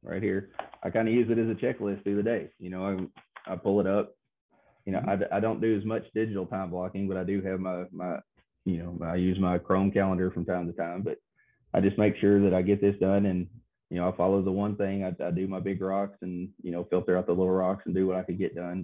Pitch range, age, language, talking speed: 85-100 Hz, 30-49, English, 275 wpm